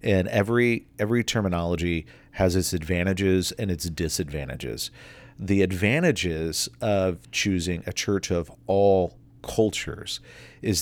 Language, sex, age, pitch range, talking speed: English, male, 40-59, 90-110 Hz, 110 wpm